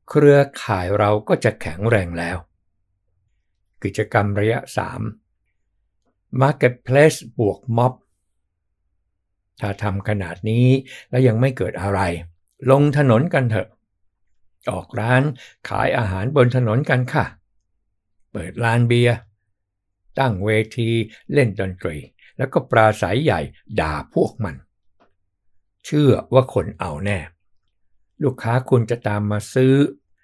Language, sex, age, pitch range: Thai, male, 60-79, 95-125 Hz